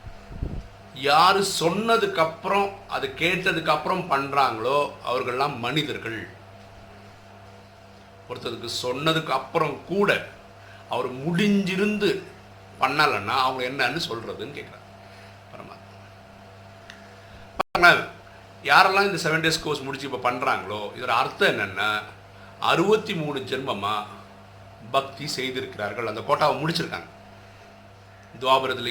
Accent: native